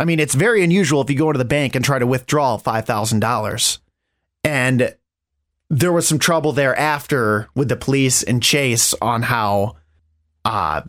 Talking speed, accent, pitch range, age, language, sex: 165 wpm, American, 130-170 Hz, 30-49, English, male